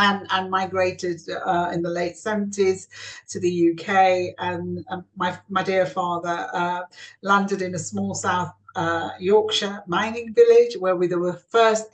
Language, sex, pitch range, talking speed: English, female, 170-195 Hz, 160 wpm